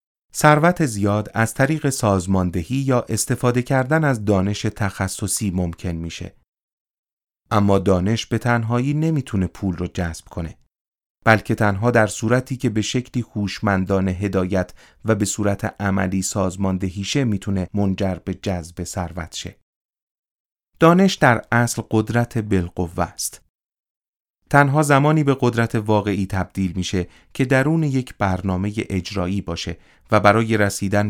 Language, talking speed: Persian, 125 wpm